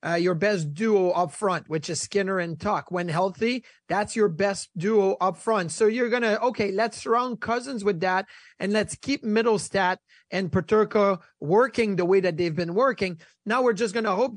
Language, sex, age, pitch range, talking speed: English, male, 30-49, 185-225 Hz, 200 wpm